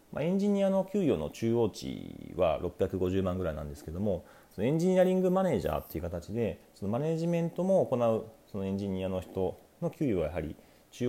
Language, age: Japanese, 40-59